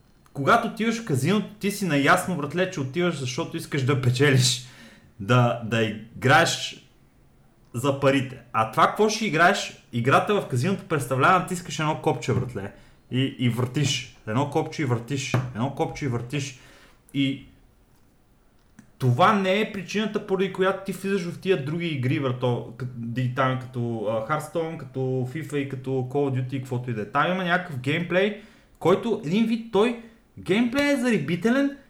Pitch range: 130-200 Hz